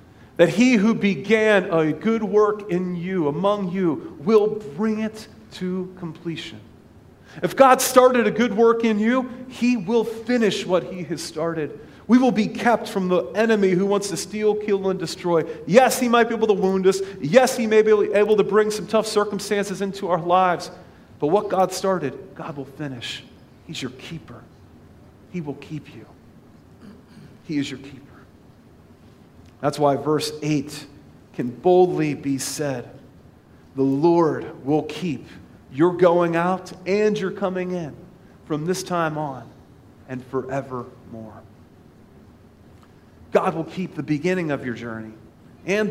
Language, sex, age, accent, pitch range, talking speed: English, male, 40-59, American, 140-205 Hz, 155 wpm